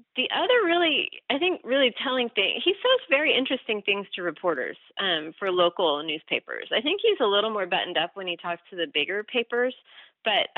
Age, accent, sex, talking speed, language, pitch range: 30-49, American, female, 200 wpm, English, 170-240 Hz